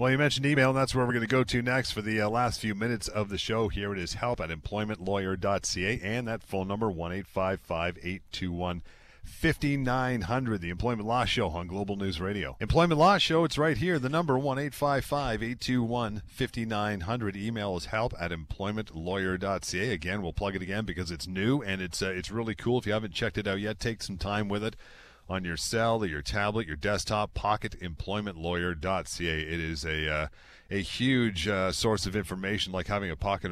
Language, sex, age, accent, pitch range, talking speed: English, male, 40-59, American, 90-120 Hz, 185 wpm